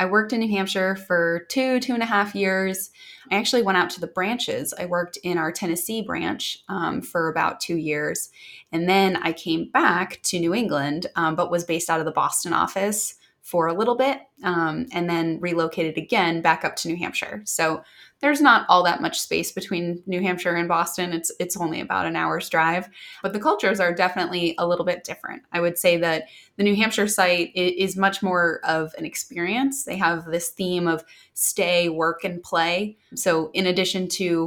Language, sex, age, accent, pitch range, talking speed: English, female, 20-39, American, 170-195 Hz, 200 wpm